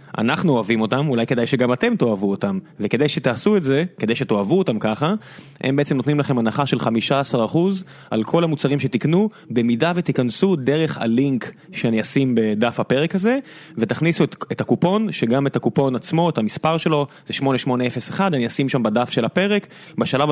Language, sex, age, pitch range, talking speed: Hebrew, male, 20-39, 115-150 Hz, 170 wpm